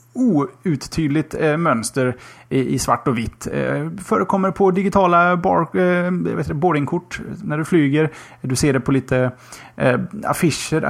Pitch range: 130-165 Hz